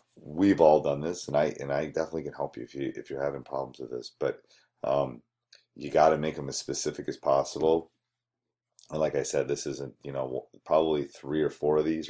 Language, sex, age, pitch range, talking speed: English, male, 30-49, 70-80 Hz, 225 wpm